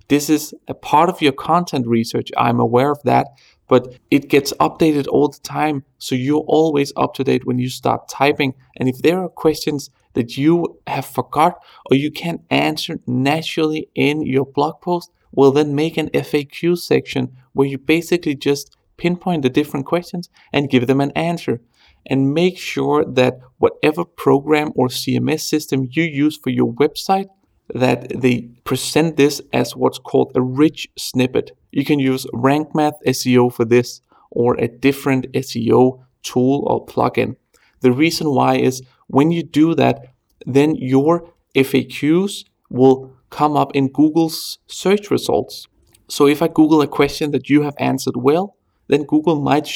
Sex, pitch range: male, 130-155 Hz